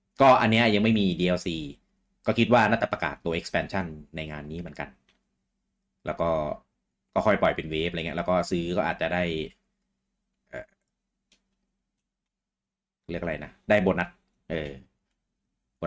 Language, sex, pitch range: Thai, male, 85-120 Hz